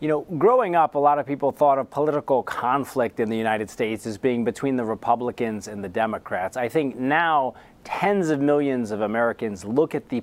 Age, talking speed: 30-49, 205 wpm